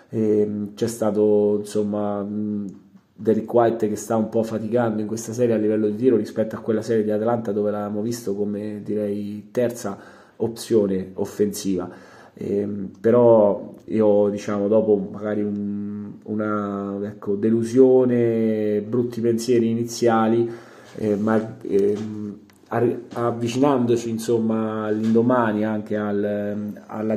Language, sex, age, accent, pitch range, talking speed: Italian, male, 20-39, native, 105-115 Hz, 110 wpm